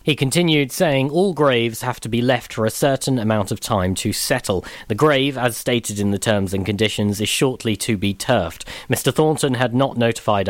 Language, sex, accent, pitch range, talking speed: English, male, British, 110-145 Hz, 205 wpm